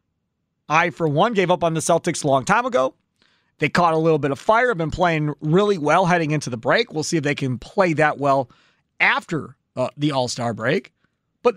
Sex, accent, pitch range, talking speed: male, American, 145-210 Hz, 220 wpm